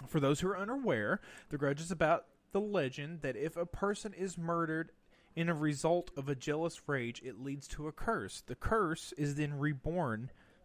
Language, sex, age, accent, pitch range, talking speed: English, male, 30-49, American, 145-185 Hz, 190 wpm